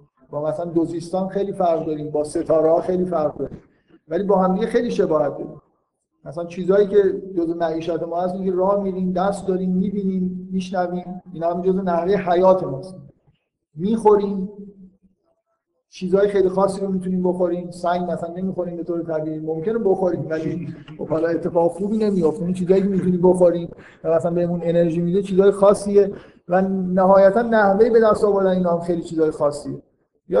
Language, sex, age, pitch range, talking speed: Persian, male, 50-69, 170-200 Hz, 160 wpm